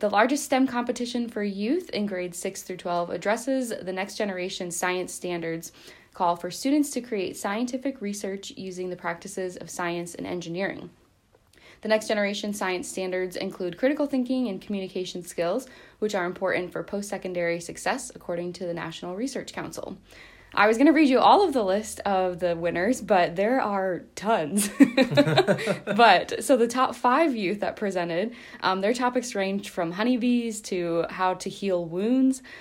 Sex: female